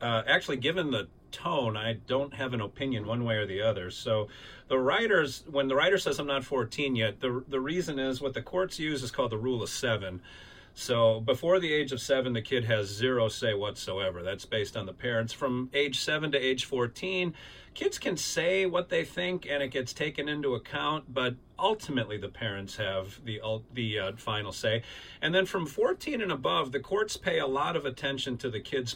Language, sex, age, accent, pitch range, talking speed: English, male, 40-59, American, 115-150 Hz, 210 wpm